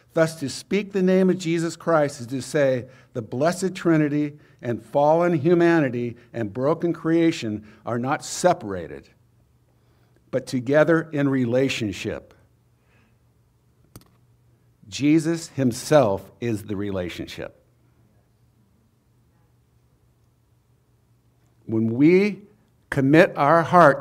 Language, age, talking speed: English, 60-79, 90 wpm